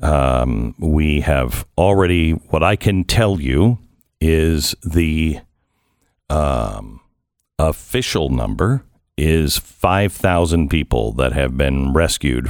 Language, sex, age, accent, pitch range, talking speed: English, male, 50-69, American, 75-95 Hz, 100 wpm